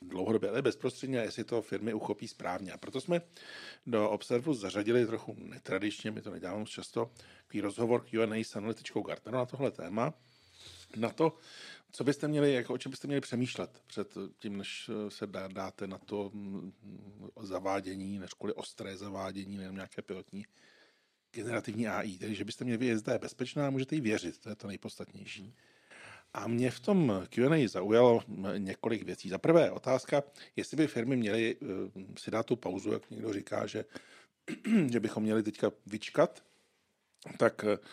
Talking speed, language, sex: 160 wpm, Czech, male